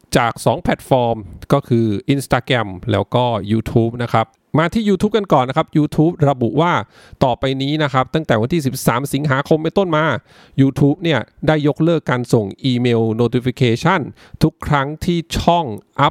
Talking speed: 65 wpm